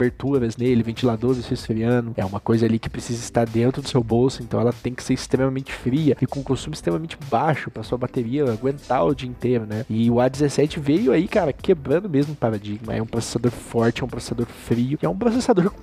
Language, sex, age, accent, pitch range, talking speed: Portuguese, male, 20-39, Brazilian, 115-140 Hz, 210 wpm